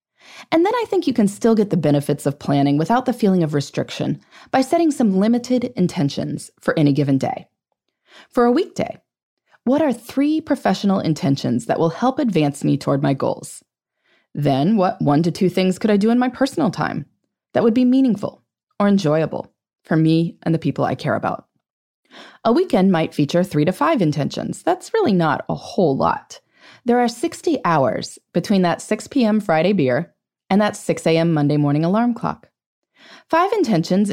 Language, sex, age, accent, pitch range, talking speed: English, female, 20-39, American, 150-245 Hz, 180 wpm